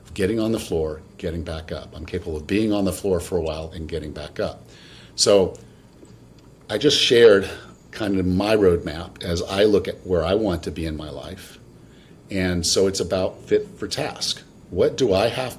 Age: 50-69